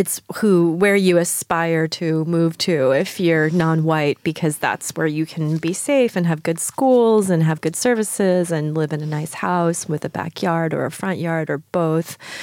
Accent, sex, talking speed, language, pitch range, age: American, female, 195 wpm, French, 160-185 Hz, 30-49